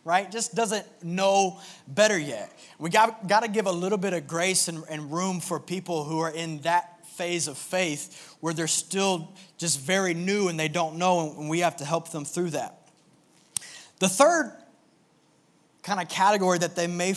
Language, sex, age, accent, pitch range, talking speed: English, male, 20-39, American, 155-190 Hz, 190 wpm